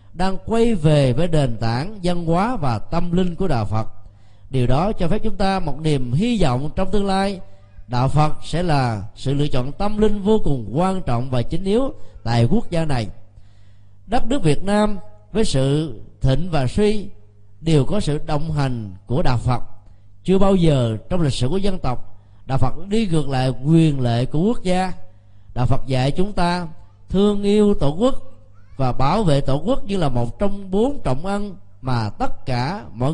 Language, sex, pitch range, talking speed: Vietnamese, male, 115-185 Hz, 195 wpm